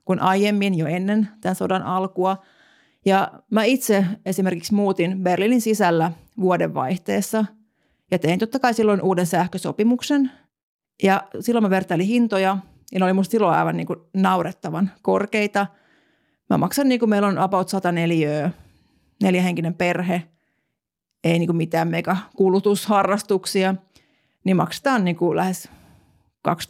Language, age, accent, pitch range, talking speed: Finnish, 30-49, native, 175-205 Hz, 135 wpm